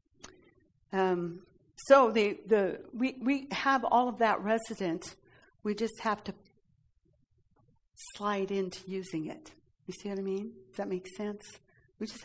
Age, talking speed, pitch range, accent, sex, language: 60-79, 145 wpm, 195-245 Hz, American, female, English